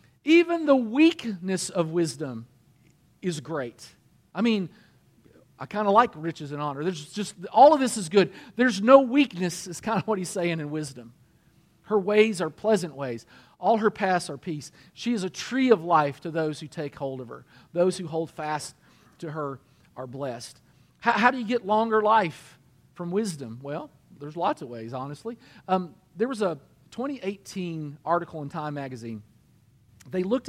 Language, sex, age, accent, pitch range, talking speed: English, male, 40-59, American, 140-190 Hz, 180 wpm